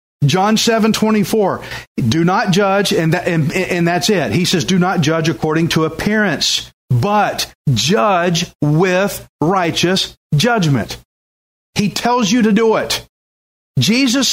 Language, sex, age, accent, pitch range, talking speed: English, male, 40-59, American, 160-205 Hz, 130 wpm